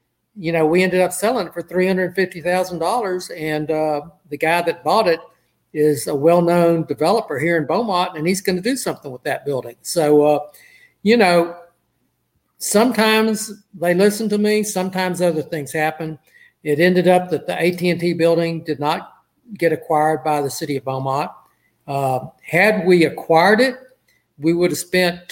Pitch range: 155-190 Hz